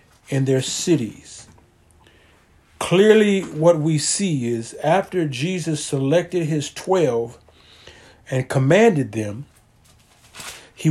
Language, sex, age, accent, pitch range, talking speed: English, male, 50-69, American, 125-180 Hz, 95 wpm